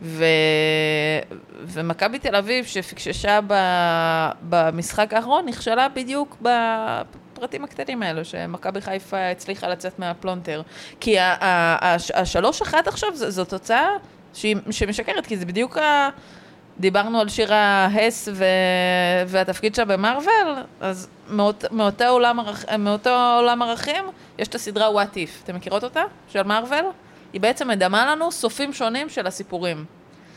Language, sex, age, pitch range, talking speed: Hebrew, female, 20-39, 180-235 Hz, 130 wpm